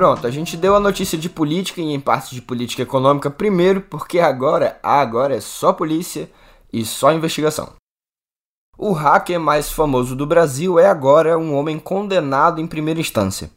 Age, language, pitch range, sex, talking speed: 10-29, Portuguese, 125-170 Hz, male, 170 wpm